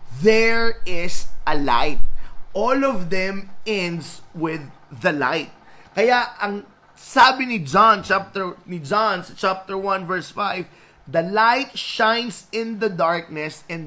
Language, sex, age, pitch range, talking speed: Filipino, male, 20-39, 165-220 Hz, 130 wpm